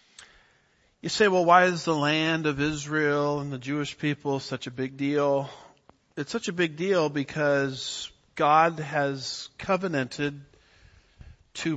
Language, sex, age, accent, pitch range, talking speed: English, male, 50-69, American, 130-155 Hz, 140 wpm